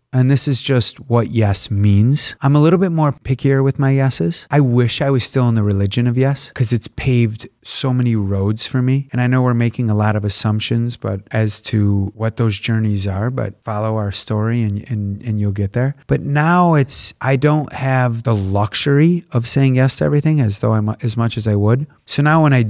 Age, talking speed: 30-49, 225 wpm